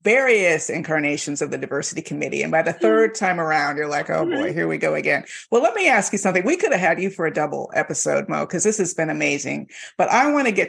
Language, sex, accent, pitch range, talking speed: English, female, American, 160-195 Hz, 260 wpm